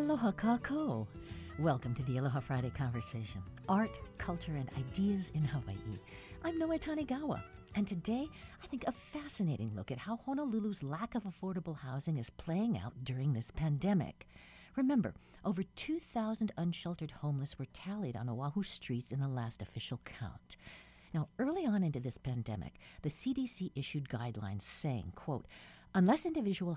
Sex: female